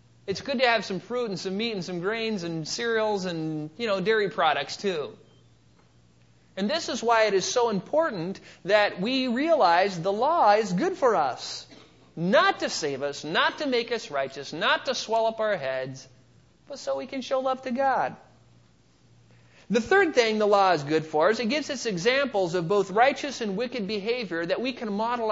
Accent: American